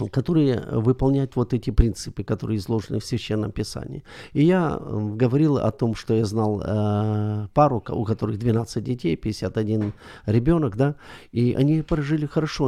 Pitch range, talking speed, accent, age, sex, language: 110-150 Hz, 140 wpm, native, 50-69, male, Ukrainian